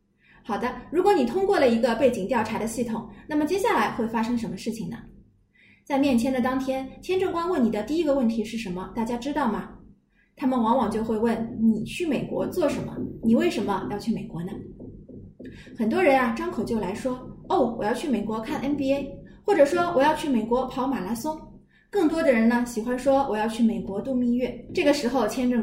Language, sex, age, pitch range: Chinese, female, 20-39, 220-275 Hz